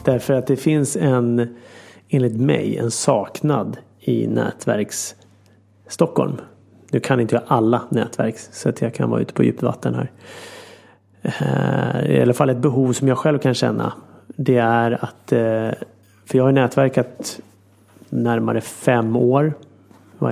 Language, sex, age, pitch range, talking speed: Swedish, male, 30-49, 110-135 Hz, 140 wpm